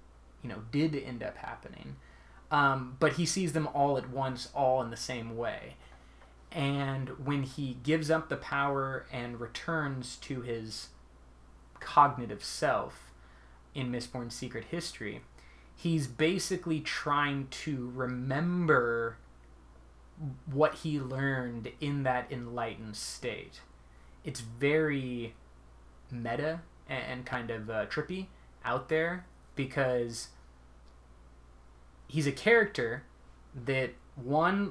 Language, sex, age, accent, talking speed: English, male, 20-39, American, 110 wpm